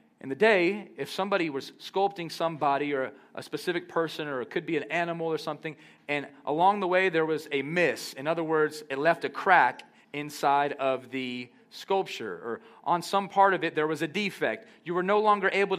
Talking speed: 205 wpm